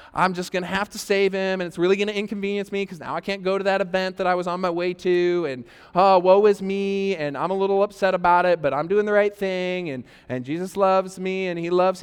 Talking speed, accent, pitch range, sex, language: 280 wpm, American, 170-210 Hz, male, English